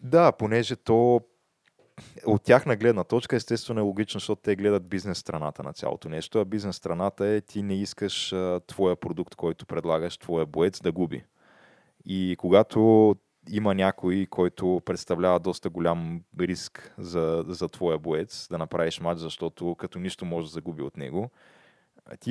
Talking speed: 155 wpm